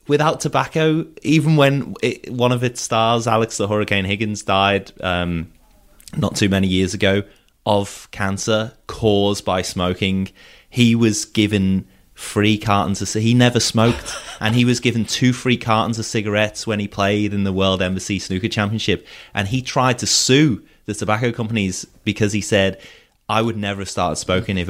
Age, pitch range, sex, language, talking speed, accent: 30-49, 95-115 Hz, male, English, 170 wpm, British